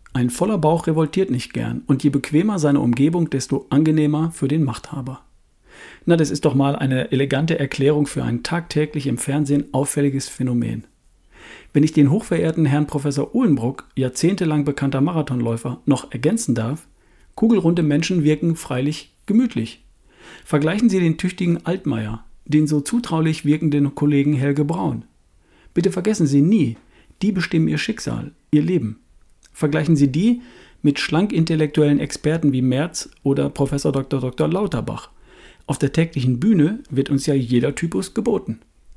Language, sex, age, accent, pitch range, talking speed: German, male, 40-59, German, 135-165 Hz, 145 wpm